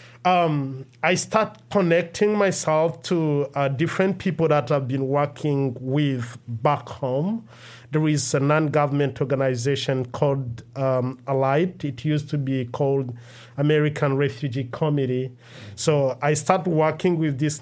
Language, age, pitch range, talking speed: English, 50-69, 130-150 Hz, 130 wpm